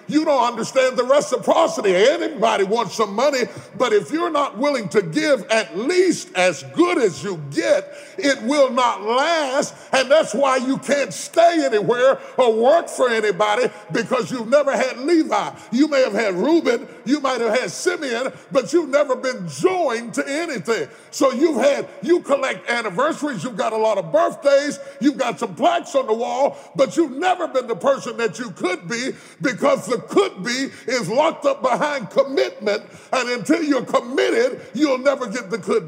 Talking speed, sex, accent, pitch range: 180 wpm, female, American, 225-295 Hz